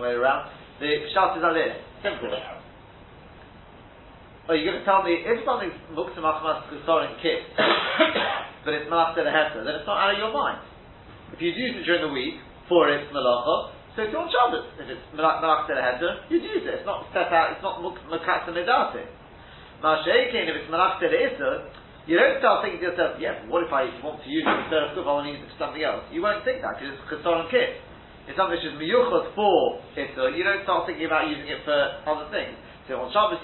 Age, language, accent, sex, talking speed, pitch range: 30-49, English, British, male, 220 wpm, 130-195 Hz